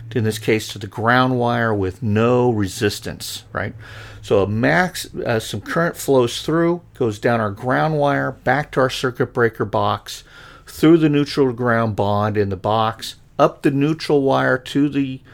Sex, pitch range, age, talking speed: male, 105-135 Hz, 50-69, 170 wpm